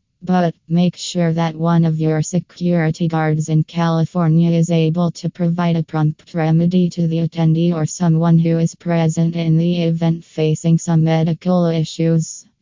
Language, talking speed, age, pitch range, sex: English, 155 wpm, 20-39, 165-180 Hz, female